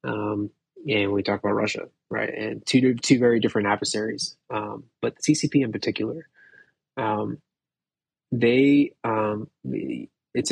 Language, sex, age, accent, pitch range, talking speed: English, male, 20-39, American, 105-120 Hz, 130 wpm